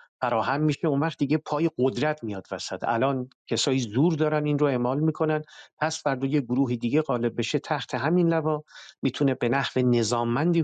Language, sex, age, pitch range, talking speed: English, male, 50-69, 115-150 Hz, 175 wpm